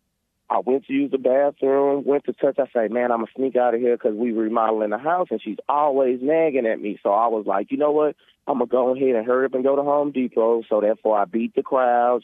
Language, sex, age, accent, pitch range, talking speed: English, male, 30-49, American, 115-140 Hz, 275 wpm